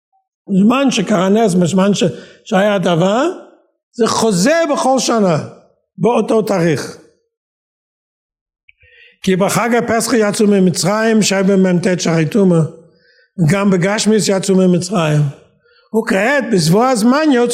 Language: Hebrew